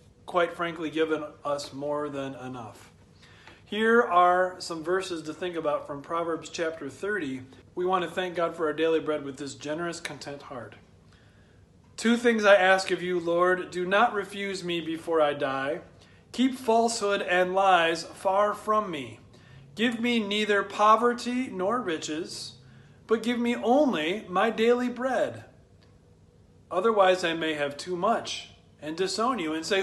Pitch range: 145-200 Hz